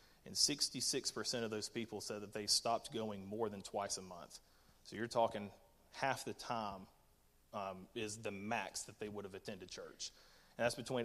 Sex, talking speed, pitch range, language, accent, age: male, 185 wpm, 105-120 Hz, English, American, 30-49